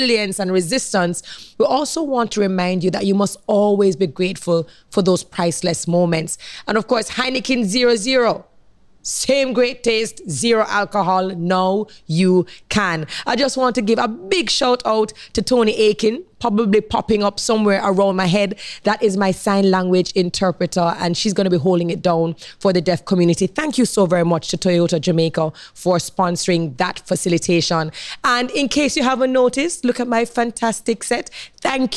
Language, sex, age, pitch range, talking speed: English, female, 20-39, 170-210 Hz, 175 wpm